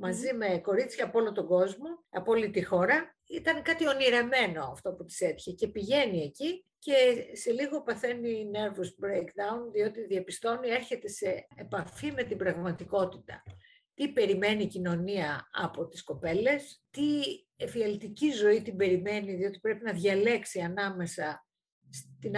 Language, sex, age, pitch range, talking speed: Greek, female, 50-69, 180-240 Hz, 140 wpm